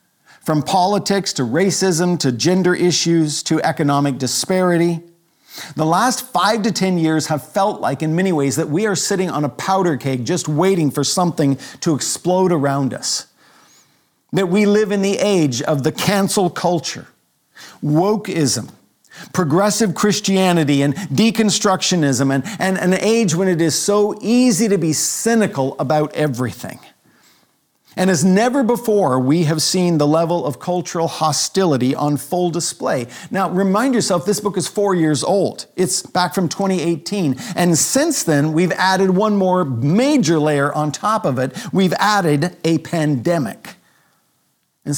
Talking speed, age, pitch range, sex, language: 150 wpm, 50-69, 150-195 Hz, male, English